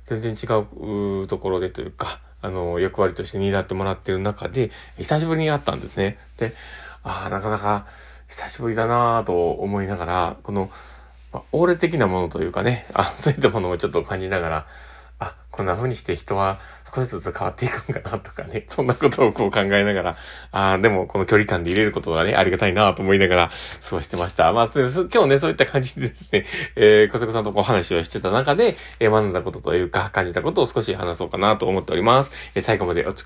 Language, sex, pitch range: Japanese, male, 95-125 Hz